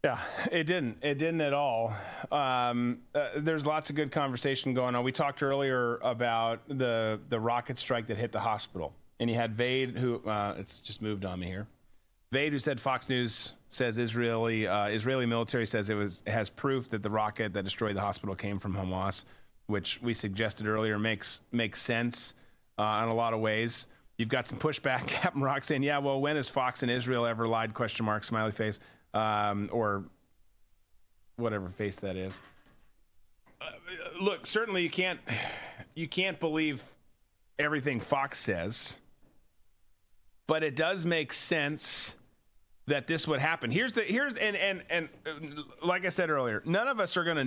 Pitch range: 110-150 Hz